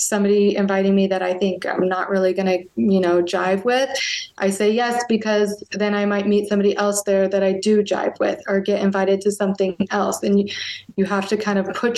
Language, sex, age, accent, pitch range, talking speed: English, female, 20-39, American, 190-210 Hz, 225 wpm